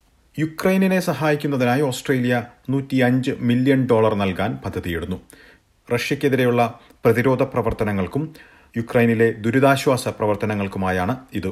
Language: Malayalam